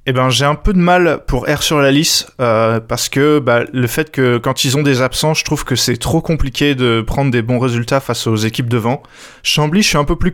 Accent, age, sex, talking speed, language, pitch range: French, 20-39, male, 260 wpm, French, 120-150 Hz